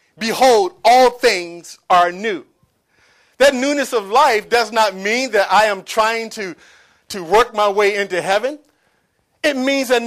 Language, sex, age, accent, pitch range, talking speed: English, male, 40-59, American, 220-285 Hz, 155 wpm